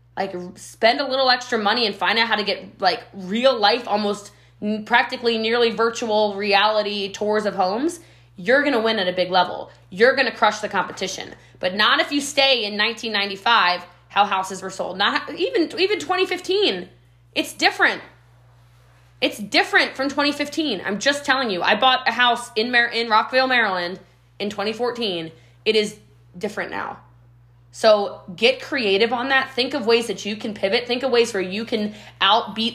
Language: English